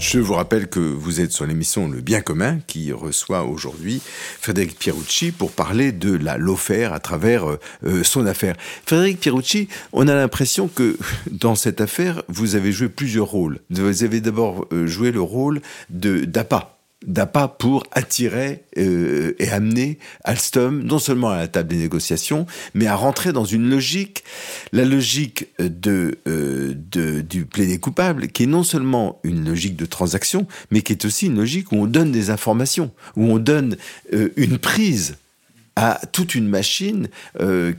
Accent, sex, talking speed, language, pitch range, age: French, male, 165 wpm, French, 90-140 Hz, 50-69